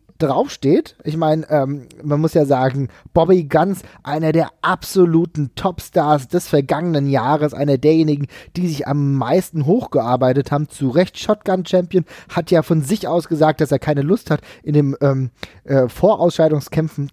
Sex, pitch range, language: male, 140-170 Hz, German